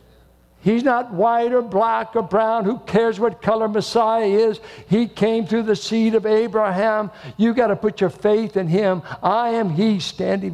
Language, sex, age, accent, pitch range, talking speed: English, male, 60-79, American, 160-225 Hz, 180 wpm